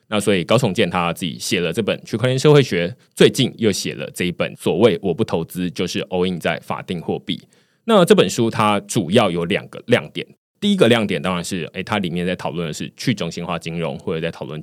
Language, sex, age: Chinese, male, 20-39